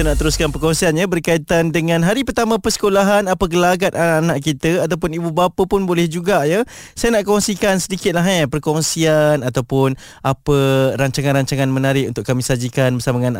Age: 20-39